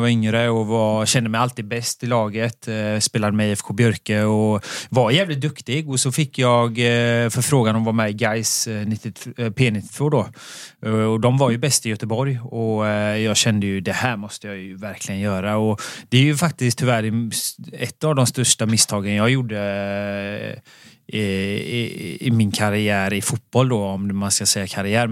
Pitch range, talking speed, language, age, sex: 110-130 Hz, 180 wpm, Swedish, 30-49, male